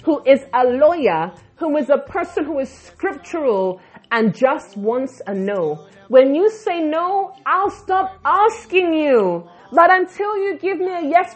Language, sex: English, female